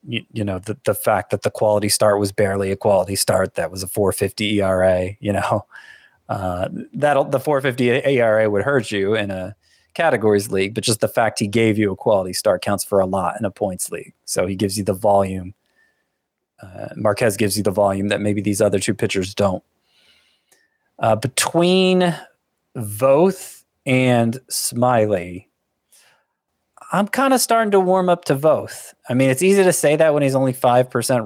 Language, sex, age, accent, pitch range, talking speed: English, male, 30-49, American, 100-135 Hz, 185 wpm